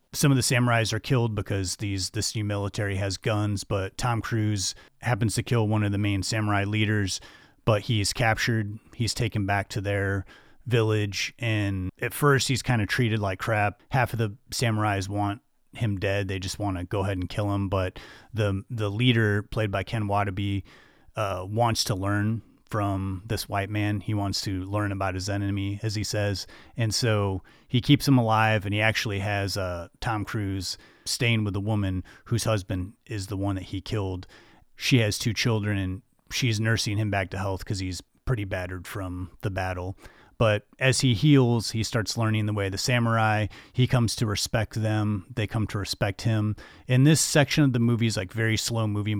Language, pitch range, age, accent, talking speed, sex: English, 100-115 Hz, 30-49, American, 195 wpm, male